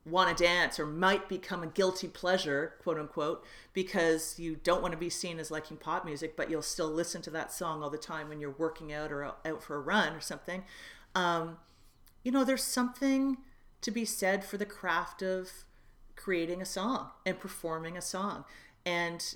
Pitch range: 160-190 Hz